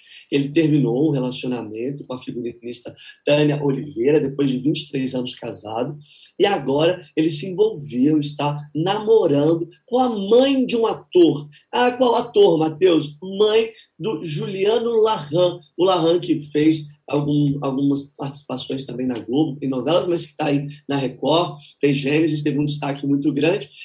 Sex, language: male, Portuguese